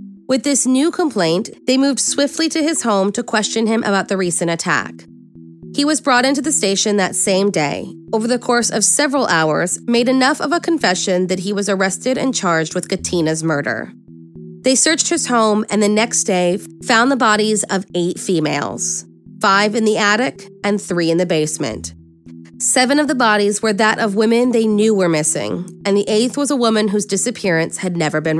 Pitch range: 180-245 Hz